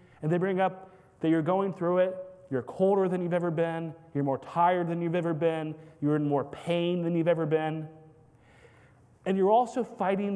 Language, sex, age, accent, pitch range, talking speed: English, male, 30-49, American, 155-205 Hz, 195 wpm